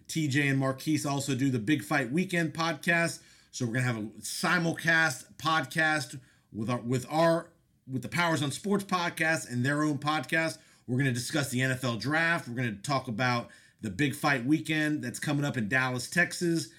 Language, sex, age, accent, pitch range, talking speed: English, male, 40-59, American, 125-155 Hz, 180 wpm